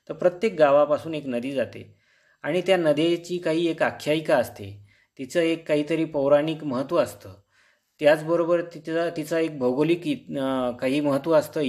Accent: native